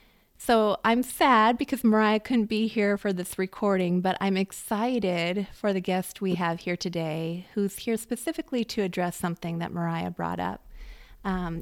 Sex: female